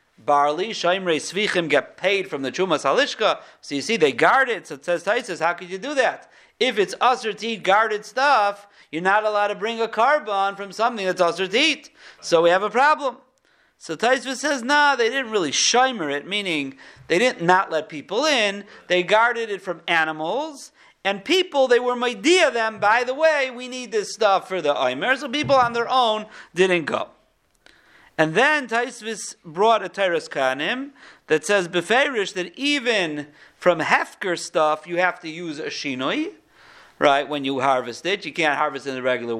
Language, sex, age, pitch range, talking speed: English, male, 50-69, 170-245 Hz, 185 wpm